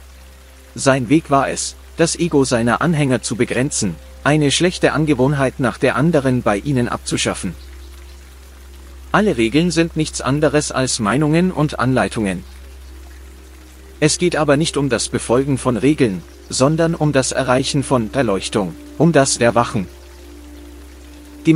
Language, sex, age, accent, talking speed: German, male, 40-59, German, 130 wpm